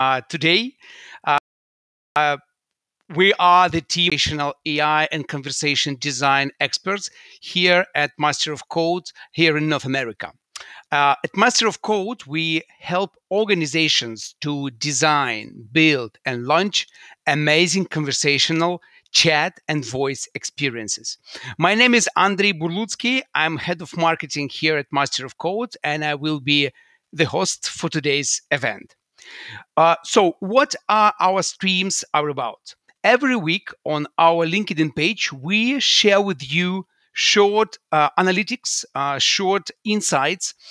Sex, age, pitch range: male, 40-59, 145-195 Hz